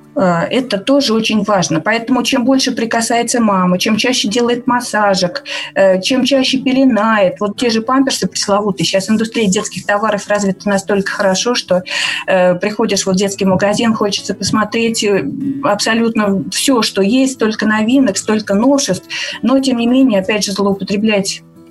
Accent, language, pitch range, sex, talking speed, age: native, Russian, 190-235 Hz, female, 140 wpm, 30-49